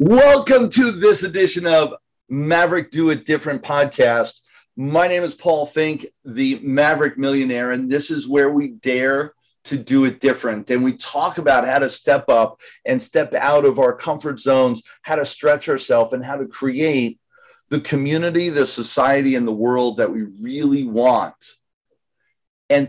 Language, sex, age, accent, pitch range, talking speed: English, male, 40-59, American, 125-160 Hz, 165 wpm